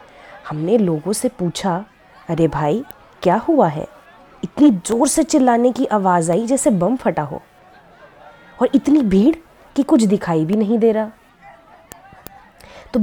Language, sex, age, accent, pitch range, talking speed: Hindi, female, 20-39, native, 195-255 Hz, 145 wpm